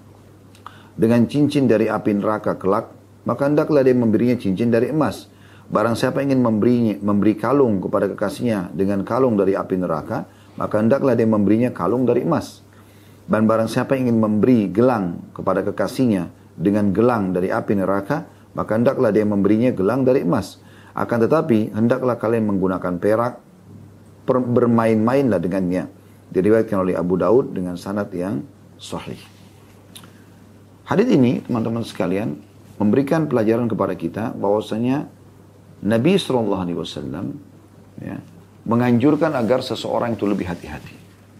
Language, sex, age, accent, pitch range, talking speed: Indonesian, male, 40-59, native, 100-120 Hz, 130 wpm